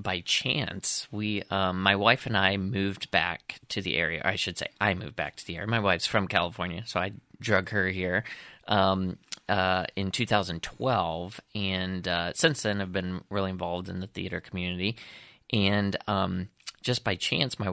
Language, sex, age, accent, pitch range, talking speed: English, male, 20-39, American, 95-105 Hz, 180 wpm